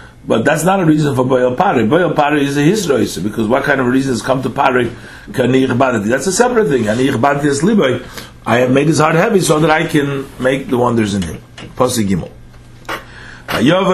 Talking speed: 180 wpm